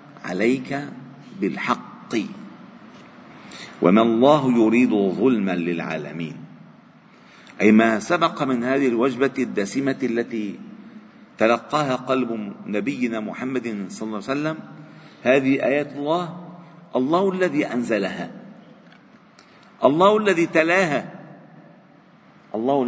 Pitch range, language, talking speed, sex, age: 110-160 Hz, Arabic, 85 wpm, male, 50-69